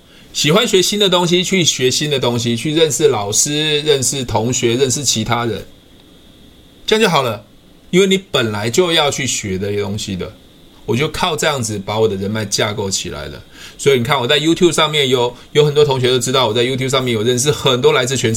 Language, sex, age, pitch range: Chinese, male, 20-39, 110-150 Hz